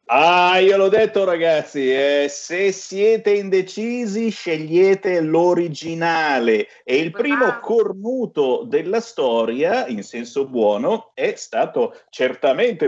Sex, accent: male, native